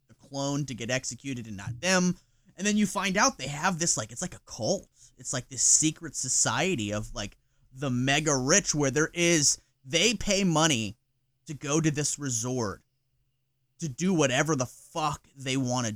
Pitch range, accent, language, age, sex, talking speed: 120-155 Hz, American, English, 30-49, male, 175 wpm